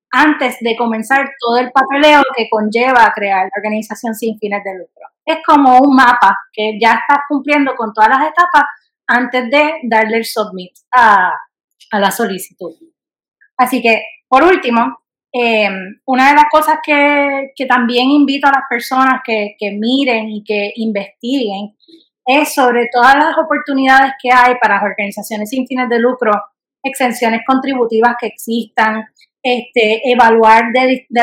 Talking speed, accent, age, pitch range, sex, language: 150 wpm, American, 20-39, 220-265 Hz, female, Spanish